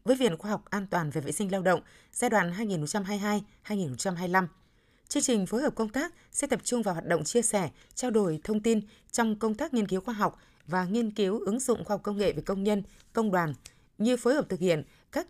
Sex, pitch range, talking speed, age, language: female, 180-230 Hz, 230 wpm, 20-39, Vietnamese